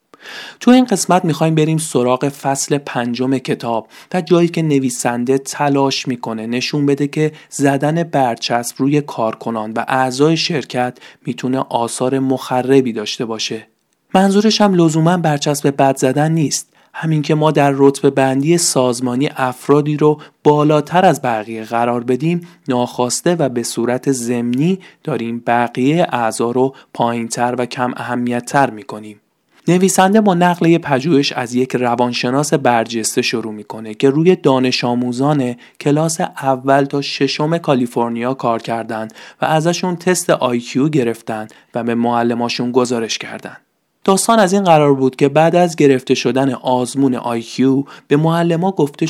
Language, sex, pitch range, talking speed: Persian, male, 120-155 Hz, 135 wpm